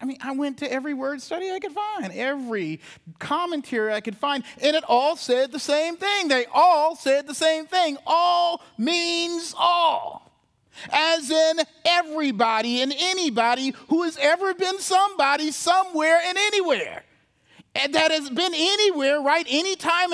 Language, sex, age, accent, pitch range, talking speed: English, male, 40-59, American, 265-340 Hz, 160 wpm